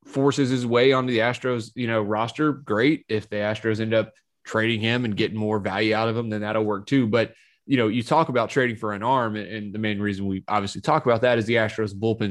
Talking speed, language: 250 wpm, English